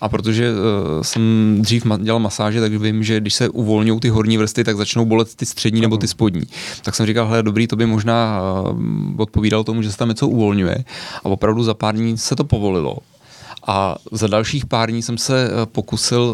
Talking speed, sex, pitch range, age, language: 195 wpm, male, 100-115 Hz, 30-49, Czech